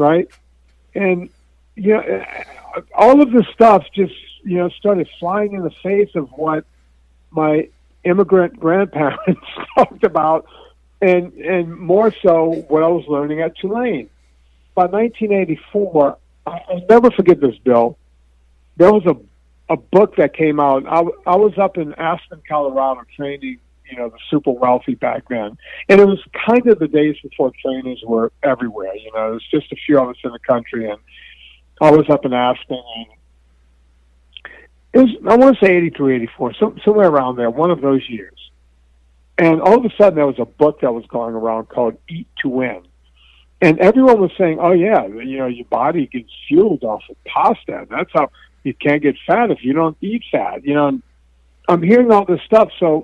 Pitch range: 115-185 Hz